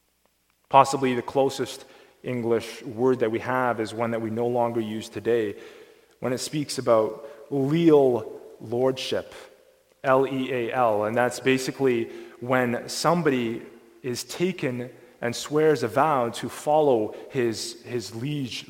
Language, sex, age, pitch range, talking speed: English, male, 20-39, 115-150 Hz, 125 wpm